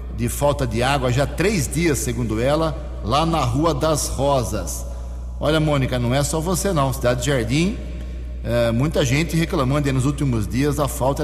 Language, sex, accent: English, male, Brazilian